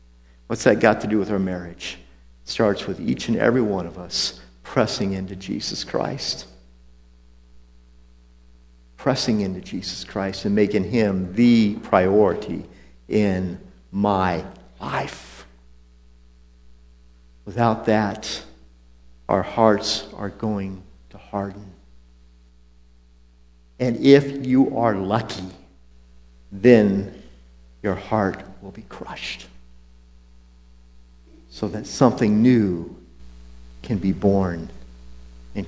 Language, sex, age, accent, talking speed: English, male, 50-69, American, 105 wpm